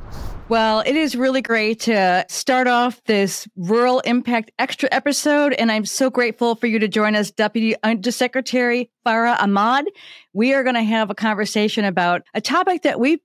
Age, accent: 40-59, American